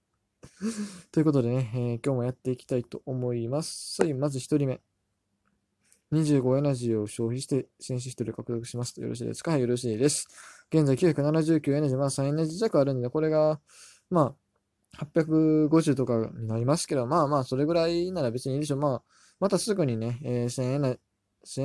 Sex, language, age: male, Japanese, 20-39